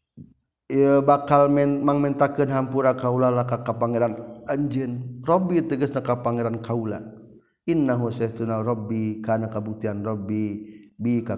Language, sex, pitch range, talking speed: Indonesian, male, 110-125 Hz, 110 wpm